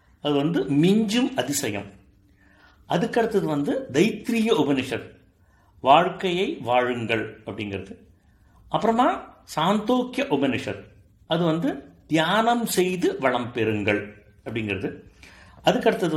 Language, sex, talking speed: Tamil, male, 80 wpm